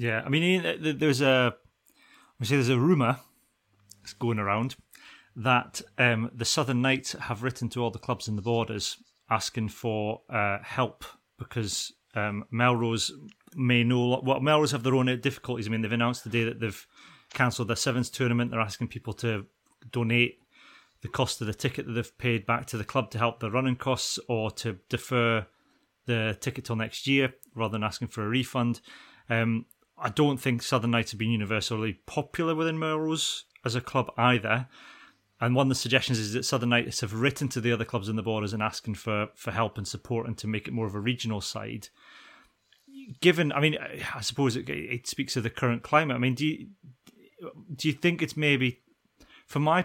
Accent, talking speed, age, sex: British, 195 wpm, 30-49, male